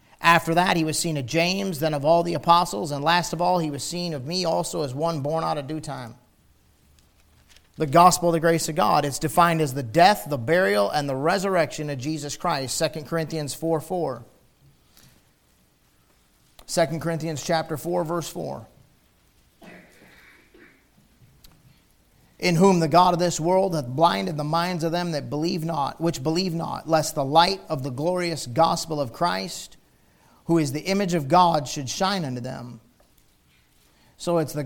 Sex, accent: male, American